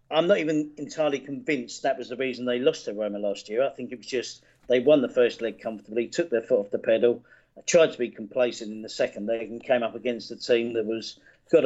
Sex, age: male, 40-59